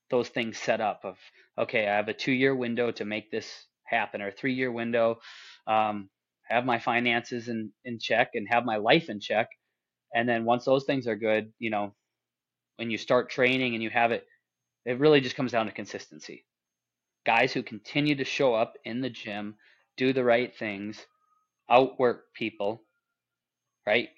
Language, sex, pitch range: English, male, 110-135 Hz